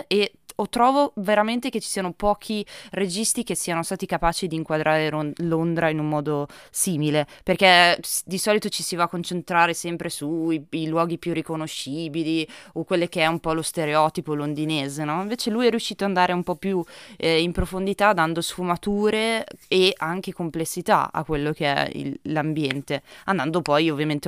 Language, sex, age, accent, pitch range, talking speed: Italian, female, 20-39, native, 155-185 Hz, 175 wpm